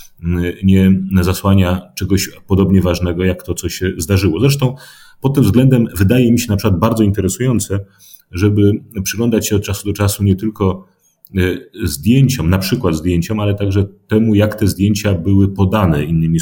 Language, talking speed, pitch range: Polish, 155 wpm, 85-105 Hz